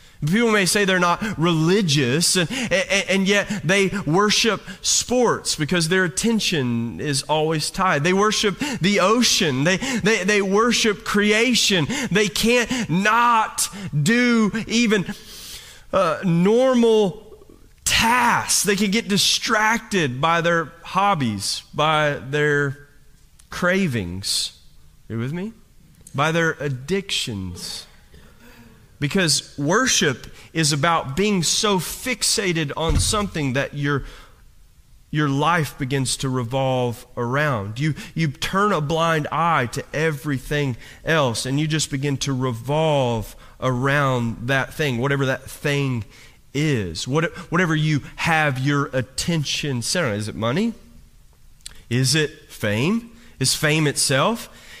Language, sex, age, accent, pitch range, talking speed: English, male, 30-49, American, 140-200 Hz, 120 wpm